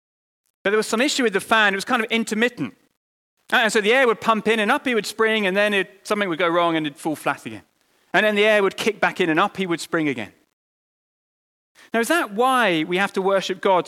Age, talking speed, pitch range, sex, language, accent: 30-49, 255 wpm, 140-205 Hz, male, English, British